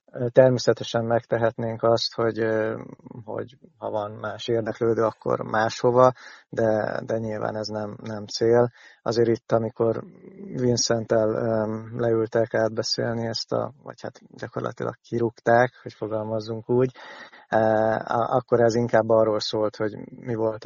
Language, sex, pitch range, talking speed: Hungarian, male, 110-120 Hz, 120 wpm